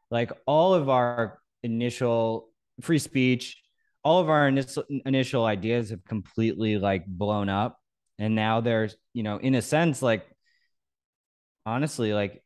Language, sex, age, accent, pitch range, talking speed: English, male, 20-39, American, 105-130 Hz, 135 wpm